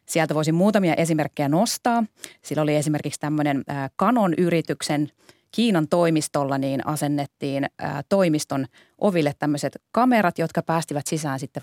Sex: female